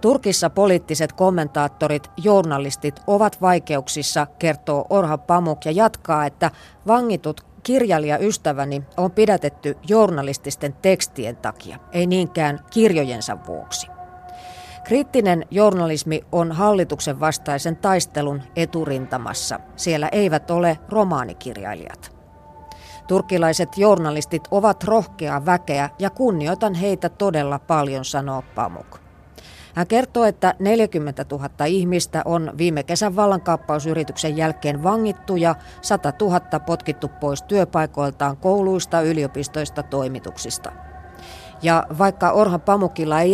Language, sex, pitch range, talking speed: Finnish, female, 145-190 Hz, 100 wpm